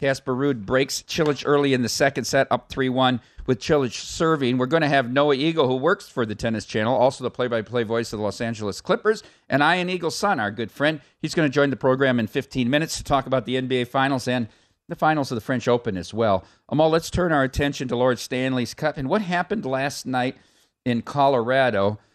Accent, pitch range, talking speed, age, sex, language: American, 115-145 Hz, 220 wpm, 50-69, male, English